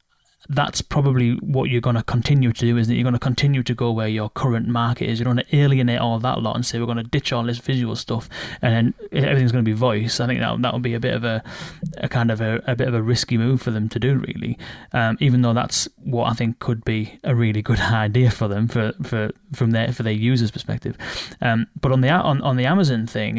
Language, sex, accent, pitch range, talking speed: English, male, British, 115-130 Hz, 265 wpm